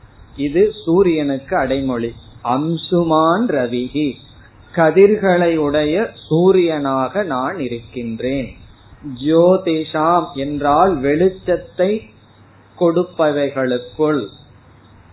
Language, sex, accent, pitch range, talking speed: Tamil, male, native, 125-170 Hz, 55 wpm